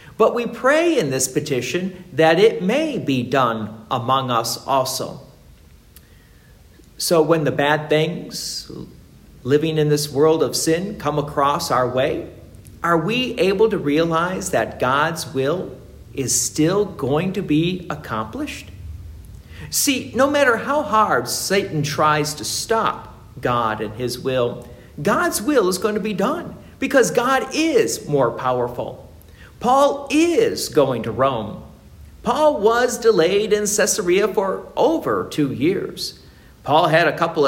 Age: 50-69